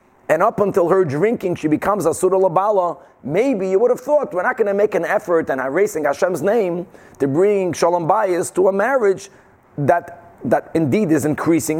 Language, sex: English, male